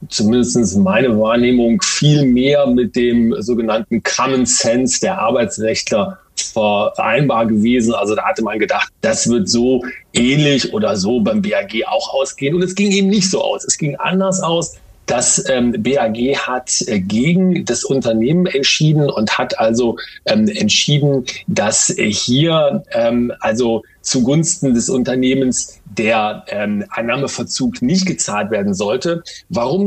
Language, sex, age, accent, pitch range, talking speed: German, male, 40-59, German, 125-190 Hz, 130 wpm